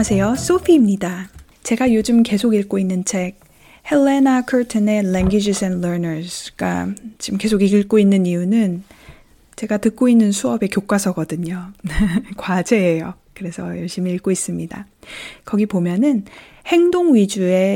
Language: Korean